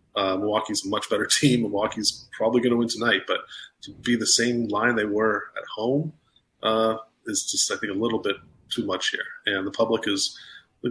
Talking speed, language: 210 wpm, English